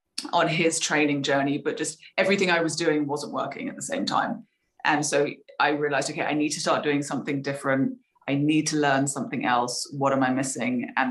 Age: 20-39